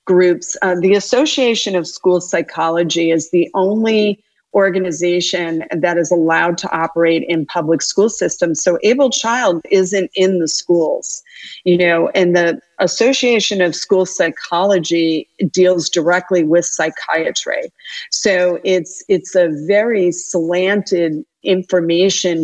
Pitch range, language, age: 165-190 Hz, English, 40-59